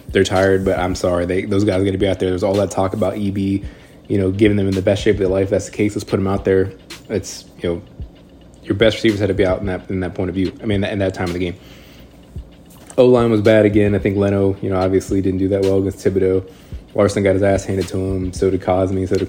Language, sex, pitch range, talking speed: English, male, 95-100 Hz, 295 wpm